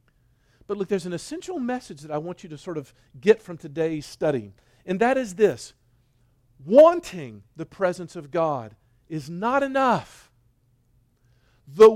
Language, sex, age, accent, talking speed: English, male, 50-69, American, 150 wpm